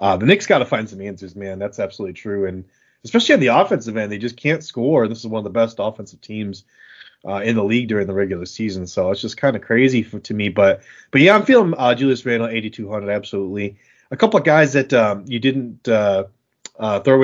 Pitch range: 95-120 Hz